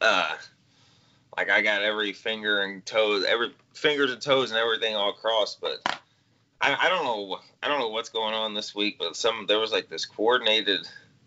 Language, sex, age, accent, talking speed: English, male, 20-39, American, 190 wpm